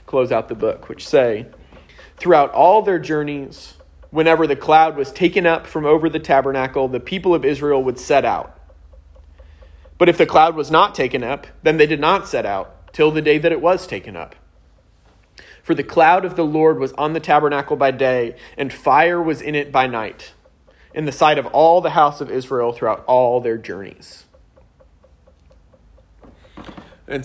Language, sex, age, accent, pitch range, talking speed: English, male, 30-49, American, 115-160 Hz, 180 wpm